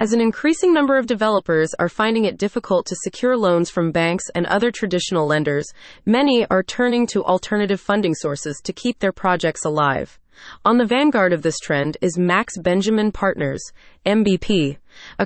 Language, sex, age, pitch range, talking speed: English, female, 30-49, 170-230 Hz, 170 wpm